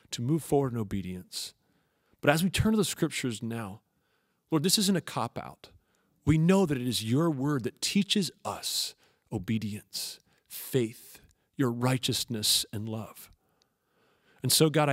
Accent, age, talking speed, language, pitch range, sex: American, 40-59, 150 wpm, English, 115-150 Hz, male